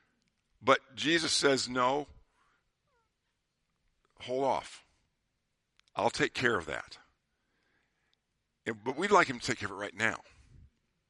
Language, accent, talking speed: English, American, 125 wpm